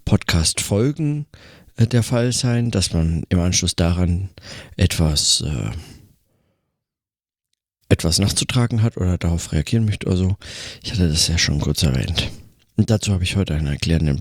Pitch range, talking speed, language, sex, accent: 90-110 Hz, 140 wpm, German, male, German